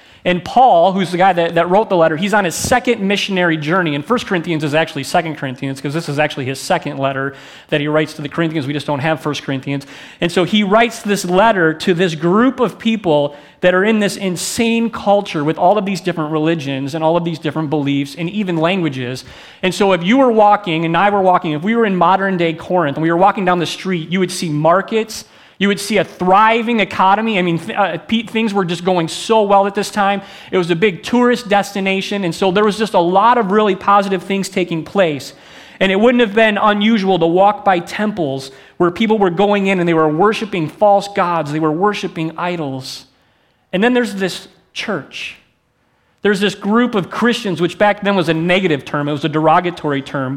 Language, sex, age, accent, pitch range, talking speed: English, male, 30-49, American, 160-205 Hz, 220 wpm